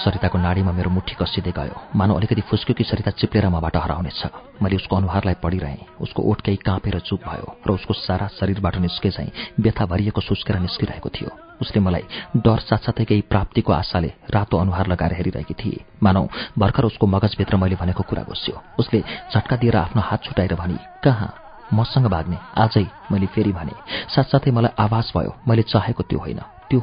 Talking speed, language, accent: 85 wpm, English, Indian